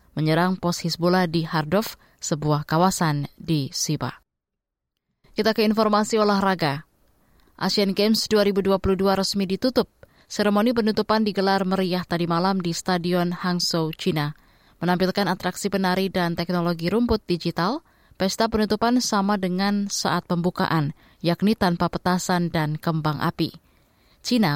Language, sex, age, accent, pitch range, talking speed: Indonesian, female, 20-39, native, 170-195 Hz, 115 wpm